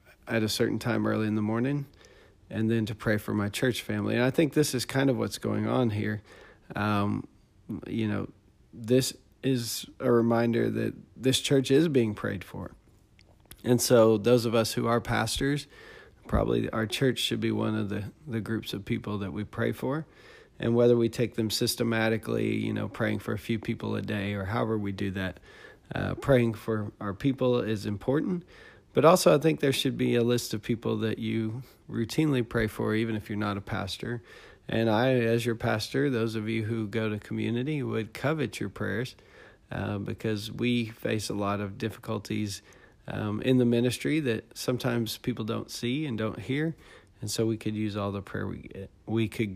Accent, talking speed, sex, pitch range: American, 195 wpm, male, 105-125 Hz